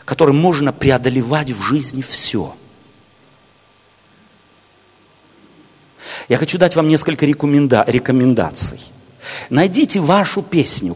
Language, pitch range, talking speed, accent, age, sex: Russian, 145-215 Hz, 90 wpm, native, 50-69, male